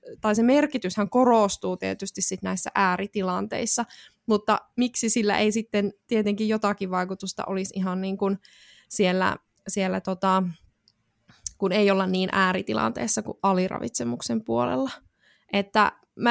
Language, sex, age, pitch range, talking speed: Finnish, female, 20-39, 190-225 Hz, 120 wpm